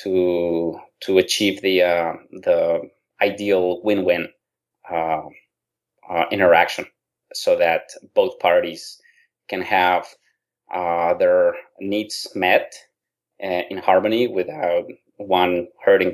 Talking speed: 105 wpm